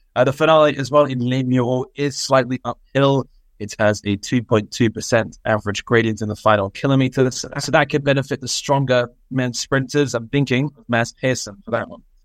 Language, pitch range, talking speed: English, 105-135 Hz, 180 wpm